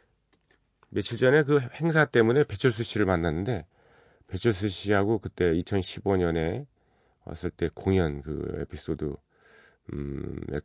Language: Korean